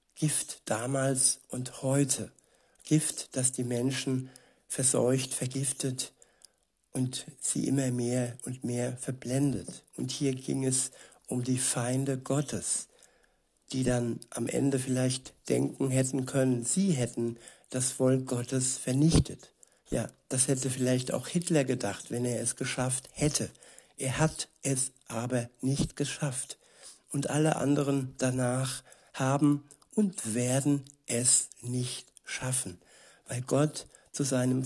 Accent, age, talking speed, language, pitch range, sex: German, 60-79, 125 wpm, German, 125-140 Hz, male